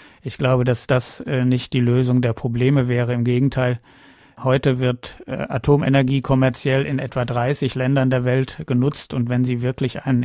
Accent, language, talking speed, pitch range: German, German, 165 wpm, 120-135 Hz